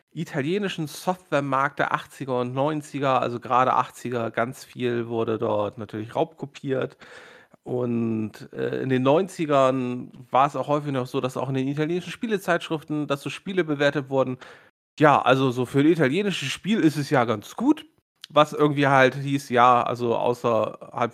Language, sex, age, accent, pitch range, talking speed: German, male, 40-59, German, 125-165 Hz, 160 wpm